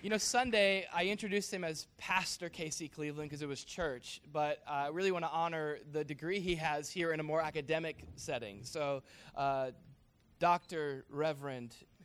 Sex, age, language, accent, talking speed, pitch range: male, 20-39, English, American, 175 wpm, 140-170 Hz